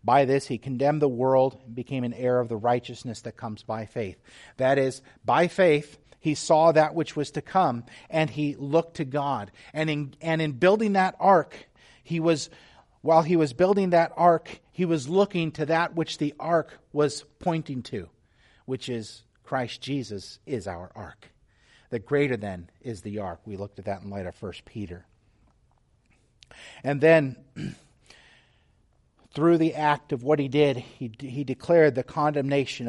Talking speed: 175 wpm